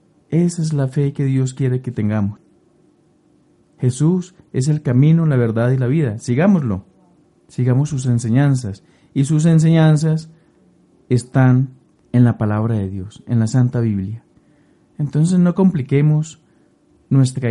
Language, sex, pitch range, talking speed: Spanish, male, 125-160 Hz, 135 wpm